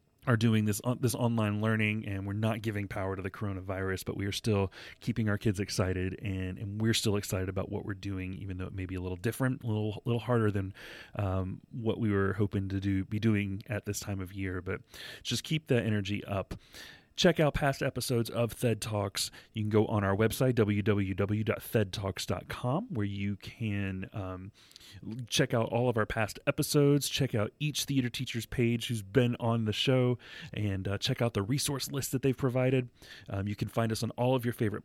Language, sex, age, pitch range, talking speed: English, male, 30-49, 100-130 Hz, 205 wpm